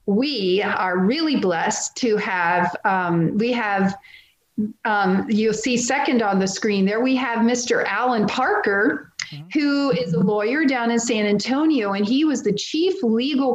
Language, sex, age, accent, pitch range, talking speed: English, female, 40-59, American, 185-245 Hz, 160 wpm